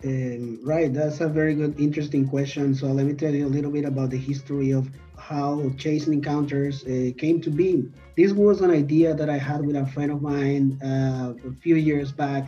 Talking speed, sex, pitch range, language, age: 210 wpm, male, 135-155 Hz, English, 30-49